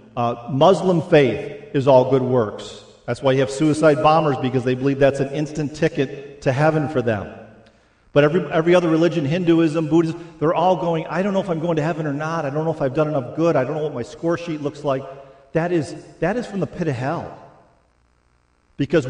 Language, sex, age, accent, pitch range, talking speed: English, male, 50-69, American, 135-170 Hz, 225 wpm